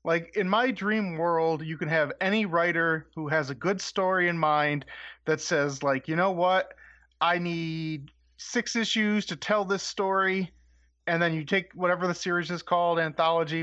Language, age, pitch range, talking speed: English, 30-49, 155-200 Hz, 180 wpm